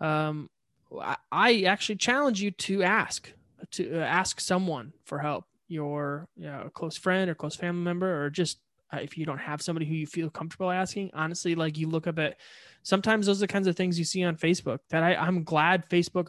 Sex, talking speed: male, 200 wpm